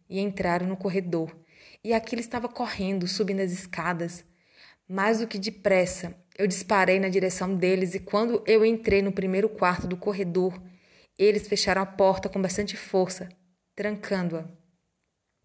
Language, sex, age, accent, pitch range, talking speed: Portuguese, female, 20-39, Brazilian, 180-205 Hz, 145 wpm